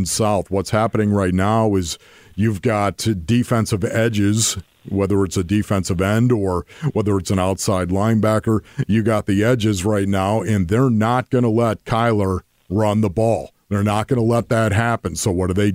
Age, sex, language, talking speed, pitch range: 50-69, male, English, 185 wpm, 105-135 Hz